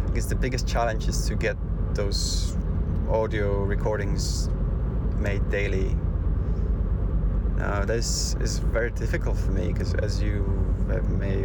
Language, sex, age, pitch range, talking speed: English, male, 30-49, 85-110 Hz, 125 wpm